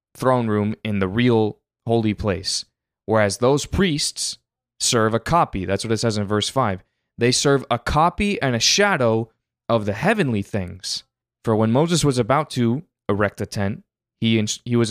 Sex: male